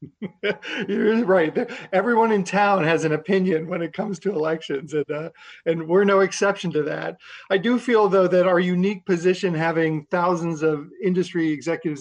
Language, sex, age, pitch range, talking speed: English, male, 40-59, 155-185 Hz, 170 wpm